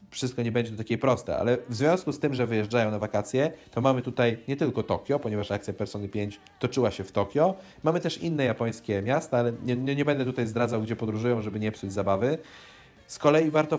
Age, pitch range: 30-49, 105-135 Hz